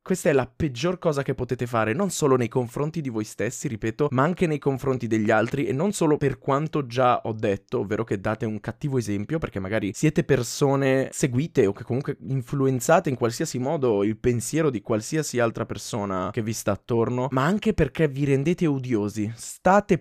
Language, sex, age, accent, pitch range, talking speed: Italian, male, 20-39, native, 110-150 Hz, 195 wpm